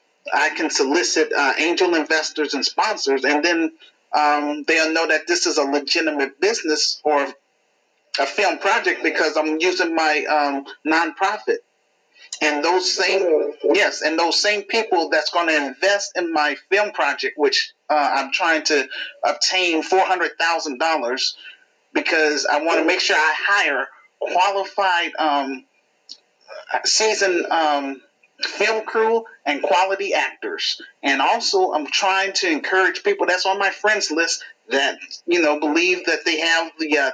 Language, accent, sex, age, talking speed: English, American, male, 40-59, 145 wpm